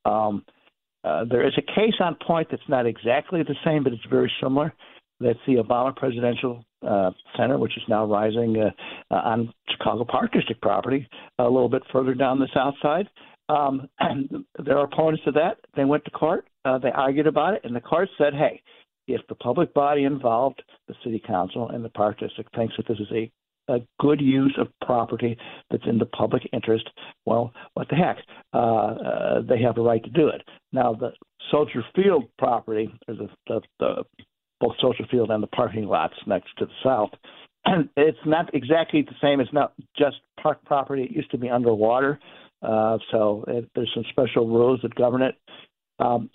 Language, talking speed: English, 190 wpm